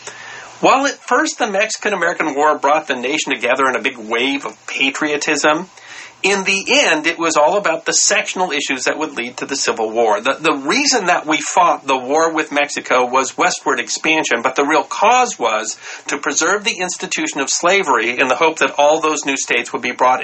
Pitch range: 140-205 Hz